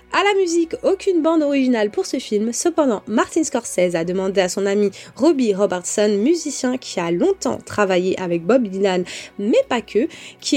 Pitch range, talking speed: 215-325 Hz, 175 wpm